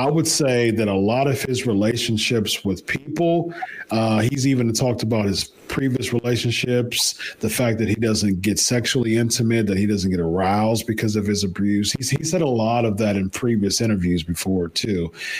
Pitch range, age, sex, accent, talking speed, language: 105-130 Hz, 40-59, male, American, 185 wpm, English